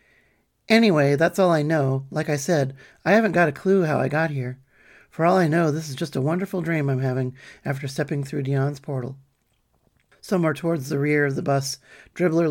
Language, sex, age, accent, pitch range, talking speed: English, male, 40-59, American, 135-170 Hz, 200 wpm